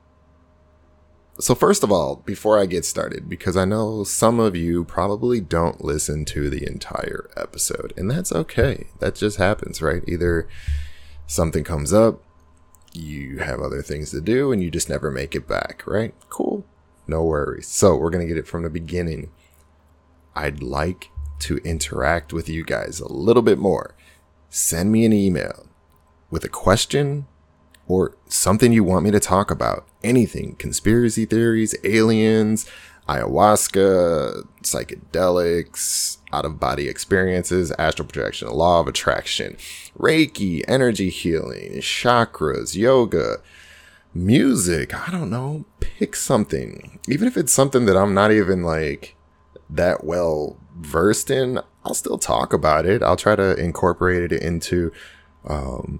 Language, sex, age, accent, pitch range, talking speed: English, male, 30-49, American, 80-105 Hz, 145 wpm